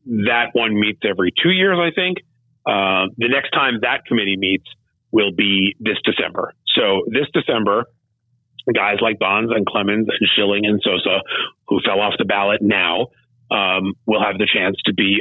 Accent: American